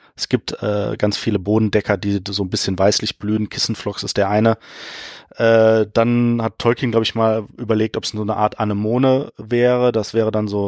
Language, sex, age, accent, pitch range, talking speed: German, male, 30-49, German, 105-125 Hz, 195 wpm